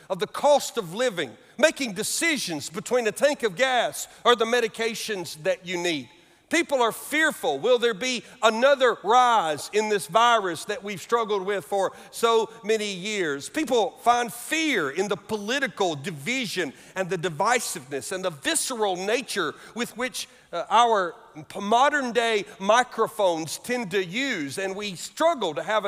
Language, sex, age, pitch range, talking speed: English, male, 50-69, 205-265 Hz, 150 wpm